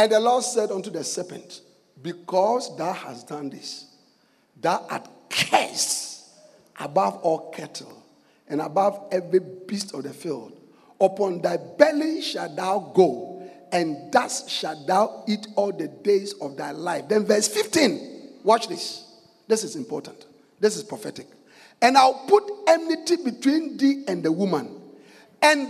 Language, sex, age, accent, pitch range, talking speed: English, male, 50-69, Nigerian, 215-360 Hz, 145 wpm